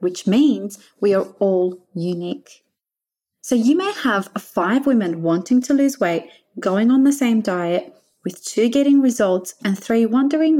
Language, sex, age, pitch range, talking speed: English, female, 30-49, 185-250 Hz, 160 wpm